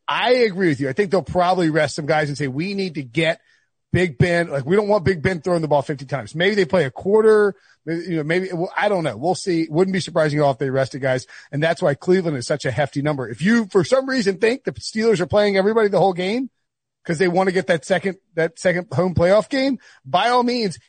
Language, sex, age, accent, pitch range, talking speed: English, male, 40-59, American, 140-200 Hz, 265 wpm